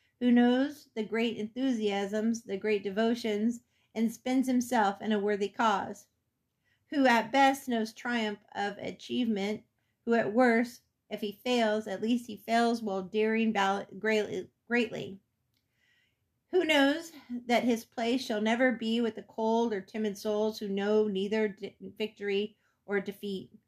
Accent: American